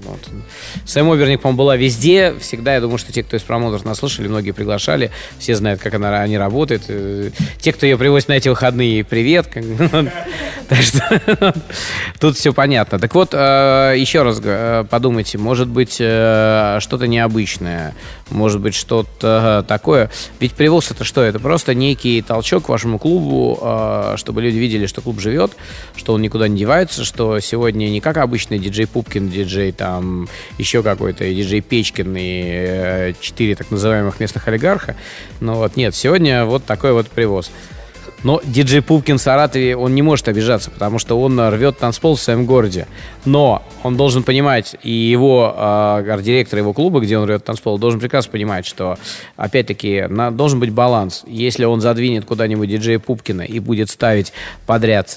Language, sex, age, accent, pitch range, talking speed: Russian, male, 20-39, native, 105-130 Hz, 160 wpm